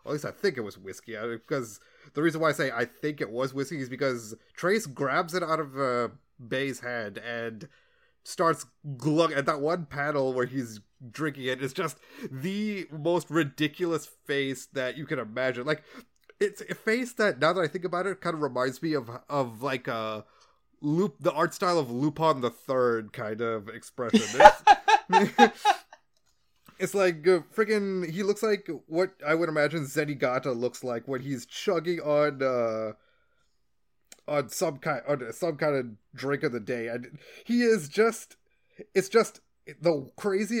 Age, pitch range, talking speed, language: 20-39, 130-180 Hz, 175 wpm, English